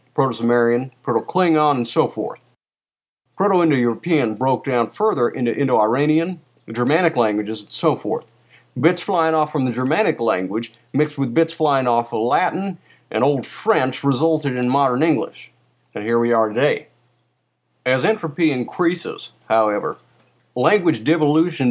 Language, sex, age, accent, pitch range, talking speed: English, male, 50-69, American, 120-160 Hz, 135 wpm